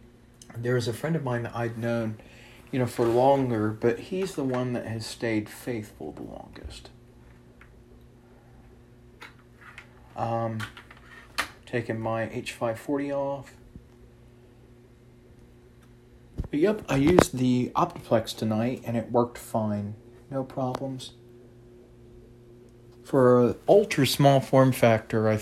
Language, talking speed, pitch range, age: English, 110 wpm, 115-120 Hz, 40-59